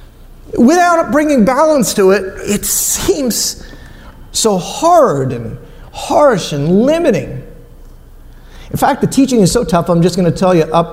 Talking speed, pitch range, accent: 150 wpm, 130-190 Hz, American